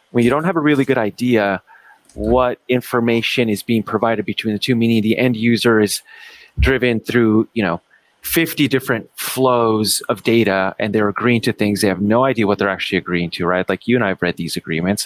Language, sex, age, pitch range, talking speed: English, male, 30-49, 95-120 Hz, 210 wpm